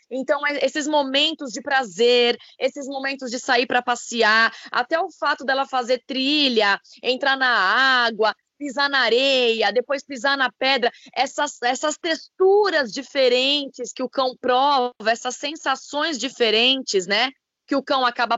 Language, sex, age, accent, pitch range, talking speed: Portuguese, female, 20-39, Brazilian, 240-300 Hz, 140 wpm